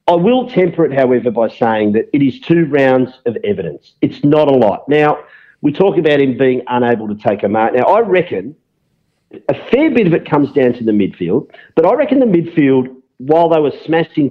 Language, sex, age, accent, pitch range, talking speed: English, male, 40-59, Australian, 130-190 Hz, 215 wpm